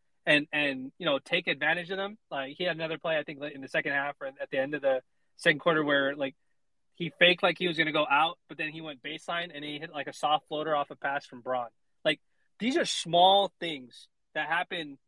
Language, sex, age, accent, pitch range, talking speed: English, male, 20-39, American, 140-175 Hz, 250 wpm